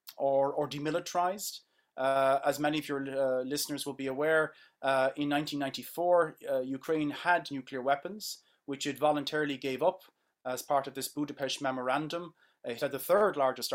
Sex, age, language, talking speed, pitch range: male, 30-49, English, 155 wpm, 130-150 Hz